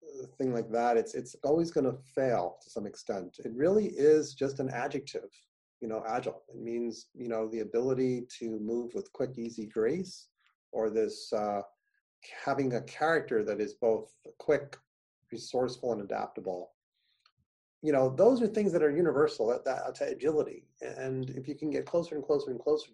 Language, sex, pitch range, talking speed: English, male, 115-170 Hz, 175 wpm